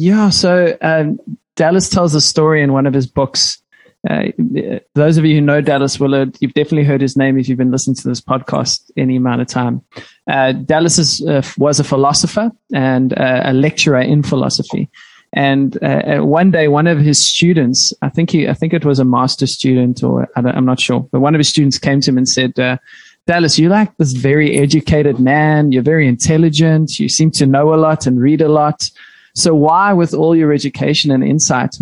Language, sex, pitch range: English, male, 130-160 Hz